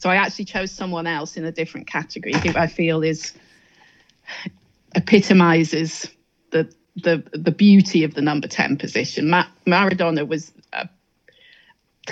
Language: English